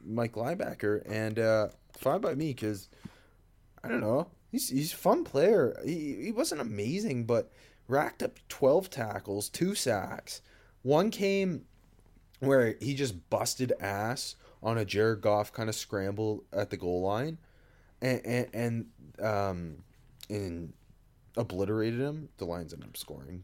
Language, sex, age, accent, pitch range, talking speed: English, male, 20-39, American, 105-150 Hz, 145 wpm